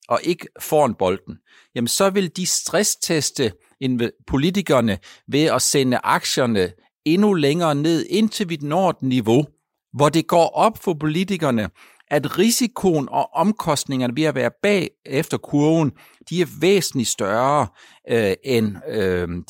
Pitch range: 115-160 Hz